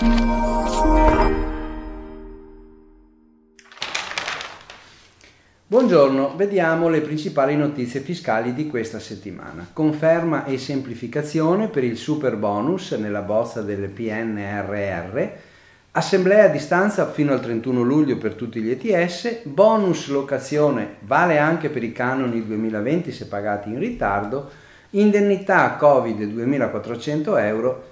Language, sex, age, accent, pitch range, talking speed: Italian, male, 40-59, native, 110-160 Hz, 100 wpm